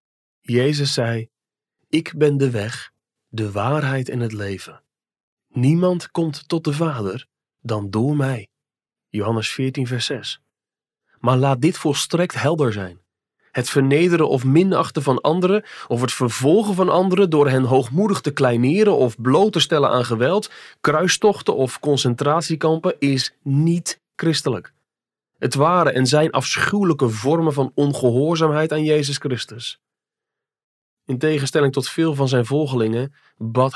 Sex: male